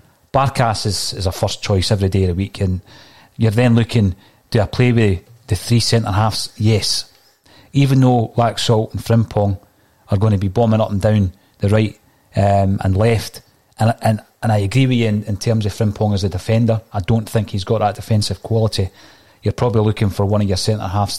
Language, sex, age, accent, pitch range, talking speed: English, male, 30-49, British, 105-120 Hz, 205 wpm